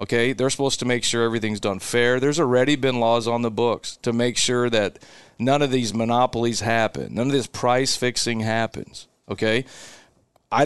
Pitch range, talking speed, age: 115-145 Hz, 185 wpm, 40-59